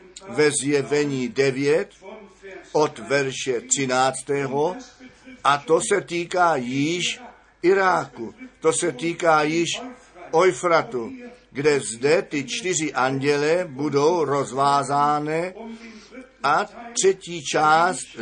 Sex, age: male, 50-69